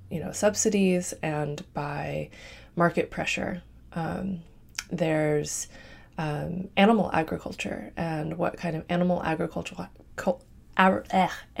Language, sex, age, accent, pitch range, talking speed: English, female, 20-39, American, 160-195 Hz, 95 wpm